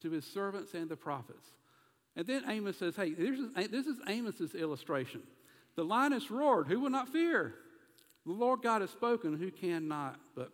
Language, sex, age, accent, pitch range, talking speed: English, male, 60-79, American, 150-225 Hz, 175 wpm